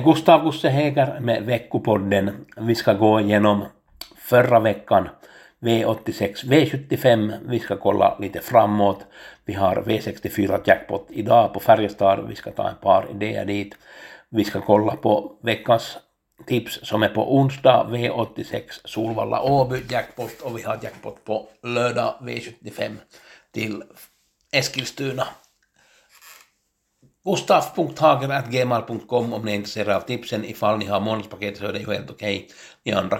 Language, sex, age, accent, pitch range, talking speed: Swedish, male, 60-79, Finnish, 100-120 Hz, 130 wpm